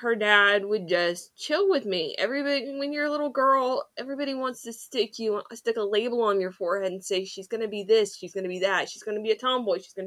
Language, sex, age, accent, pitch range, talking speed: English, female, 20-39, American, 180-235 Hz, 260 wpm